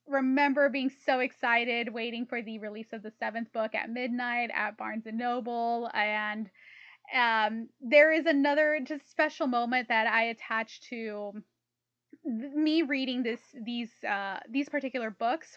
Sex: female